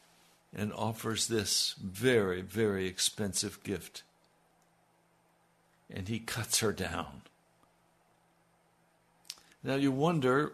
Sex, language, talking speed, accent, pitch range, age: male, English, 85 wpm, American, 105-150 Hz, 60-79